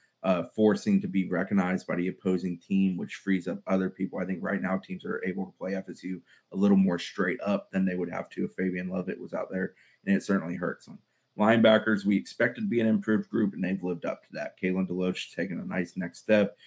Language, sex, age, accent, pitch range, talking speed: English, male, 30-49, American, 95-105 Hz, 240 wpm